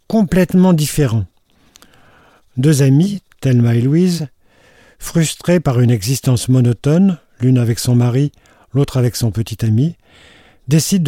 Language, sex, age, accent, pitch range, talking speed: French, male, 50-69, French, 120-150 Hz, 120 wpm